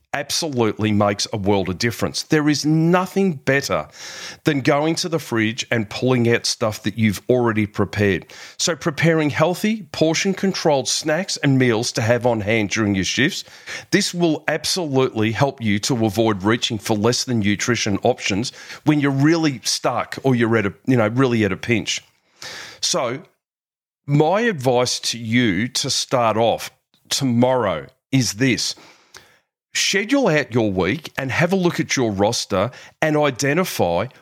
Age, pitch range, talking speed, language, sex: 40-59, 115-155 Hz, 155 wpm, English, male